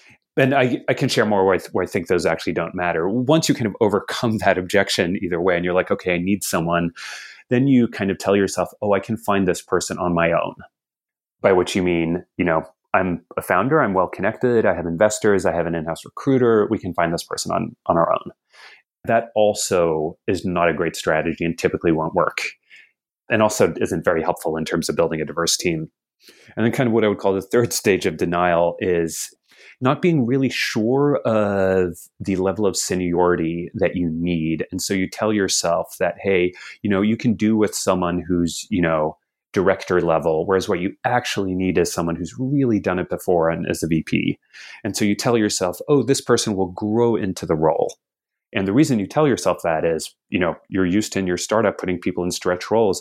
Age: 30-49